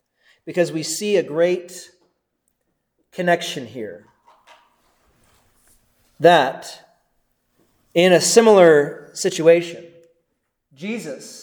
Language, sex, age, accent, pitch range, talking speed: English, male, 30-49, American, 155-200 Hz, 70 wpm